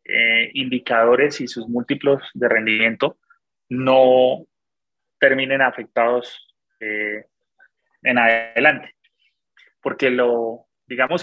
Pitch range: 115-135 Hz